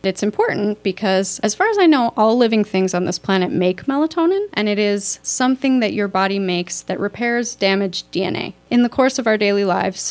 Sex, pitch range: female, 190-240 Hz